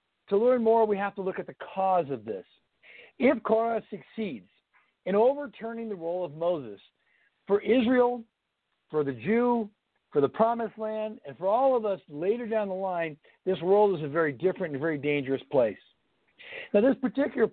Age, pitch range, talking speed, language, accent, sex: 60-79, 175-225 Hz, 180 wpm, English, American, male